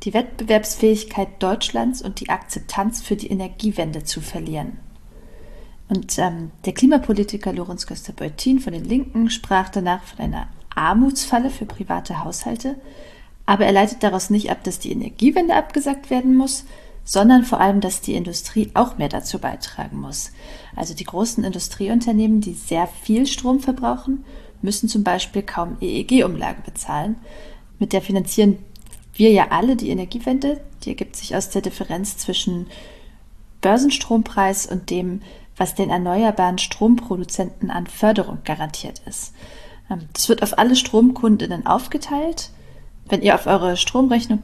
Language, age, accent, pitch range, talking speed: German, 40-59, German, 190-240 Hz, 140 wpm